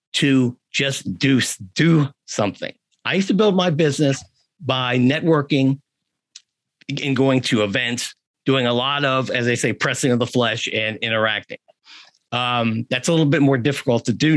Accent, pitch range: American, 120-155 Hz